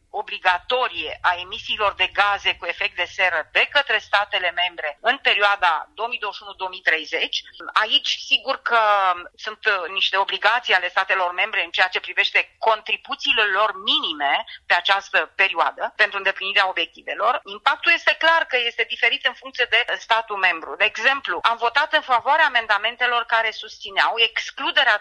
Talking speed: 140 wpm